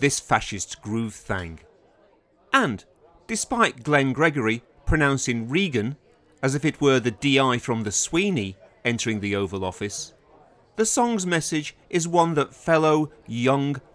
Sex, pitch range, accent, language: male, 115-160 Hz, British, English